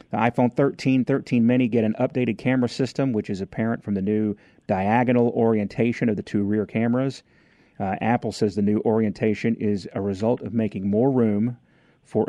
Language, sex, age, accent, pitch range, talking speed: English, male, 40-59, American, 105-120 Hz, 175 wpm